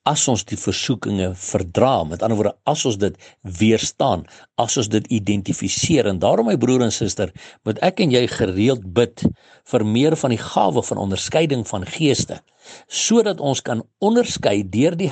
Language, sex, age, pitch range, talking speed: English, male, 60-79, 105-145 Hz, 175 wpm